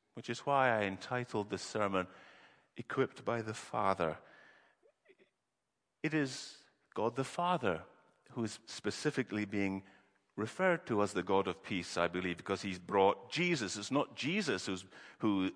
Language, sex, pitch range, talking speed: English, male, 95-120 Hz, 145 wpm